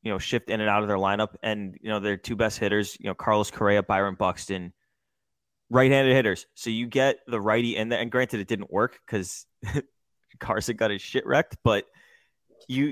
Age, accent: 20-39, American